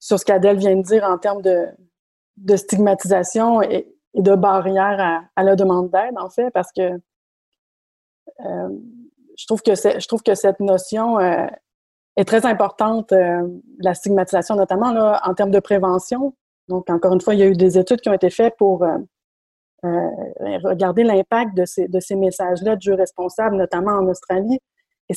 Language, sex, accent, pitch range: French, female, Canadian, 185-230 Hz